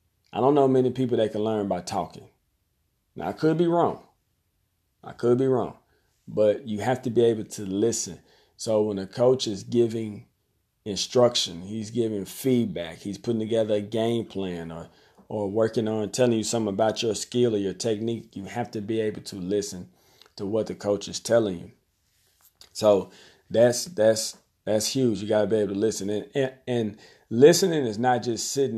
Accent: American